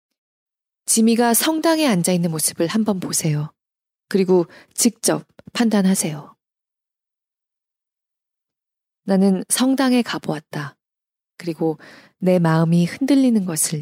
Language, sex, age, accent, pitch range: Korean, female, 20-39, native, 165-220 Hz